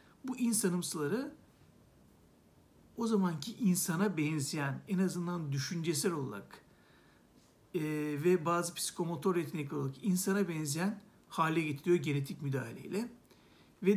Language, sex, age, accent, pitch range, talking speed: Turkish, male, 60-79, native, 160-205 Hz, 100 wpm